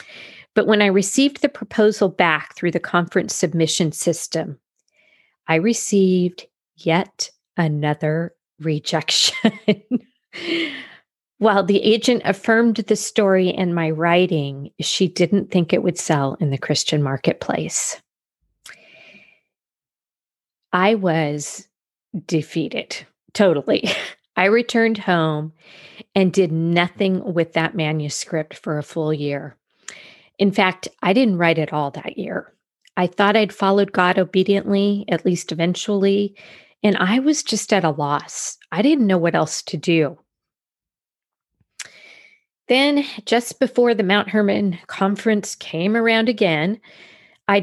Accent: American